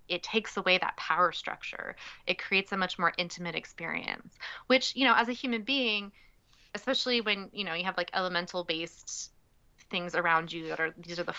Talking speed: 195 wpm